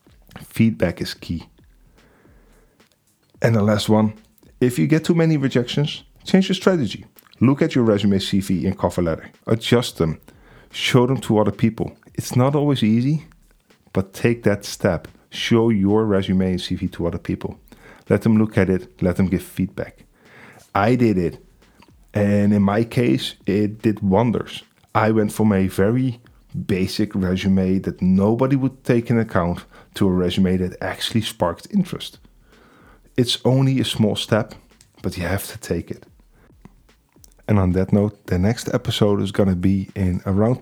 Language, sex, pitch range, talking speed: English, male, 95-120 Hz, 160 wpm